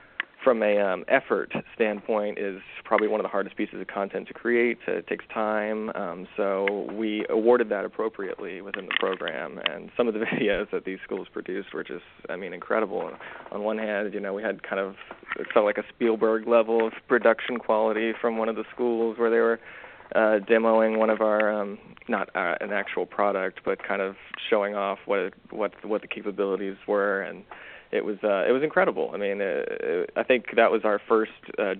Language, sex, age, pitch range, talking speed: English, male, 20-39, 100-115 Hz, 205 wpm